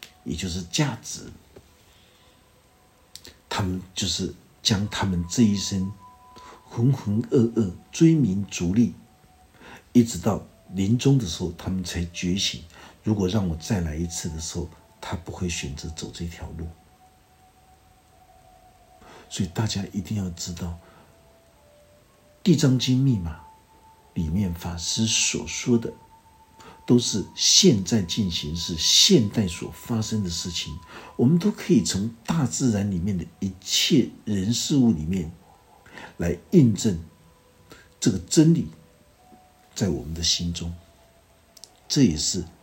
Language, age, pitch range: Chinese, 60-79, 85-115 Hz